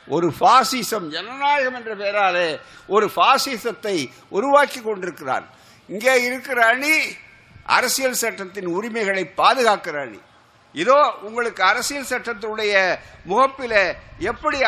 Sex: male